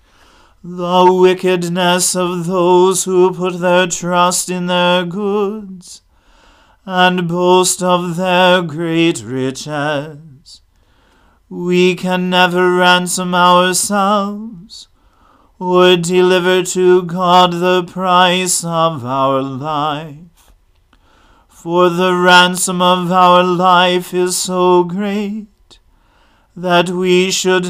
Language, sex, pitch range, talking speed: English, male, 175-185 Hz, 95 wpm